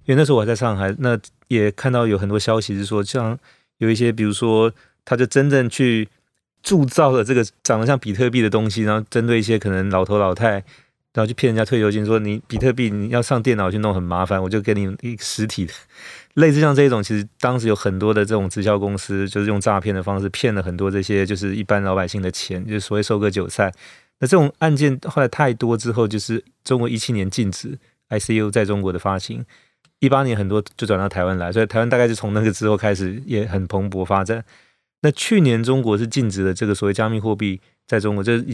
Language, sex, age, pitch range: Chinese, male, 30-49, 100-120 Hz